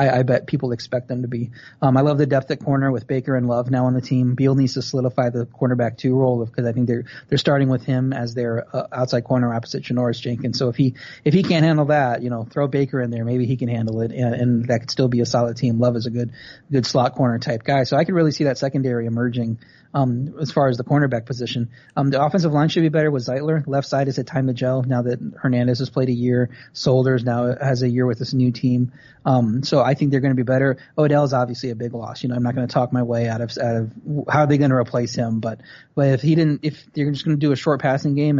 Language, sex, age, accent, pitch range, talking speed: English, male, 30-49, American, 120-140 Hz, 280 wpm